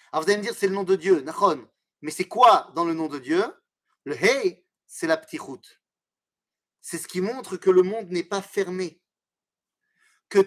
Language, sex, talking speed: French, male, 205 wpm